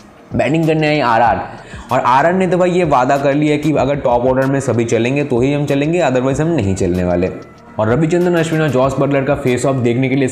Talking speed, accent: 235 wpm, native